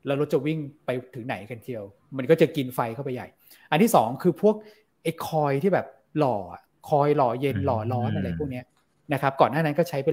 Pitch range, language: 125-165 Hz, Thai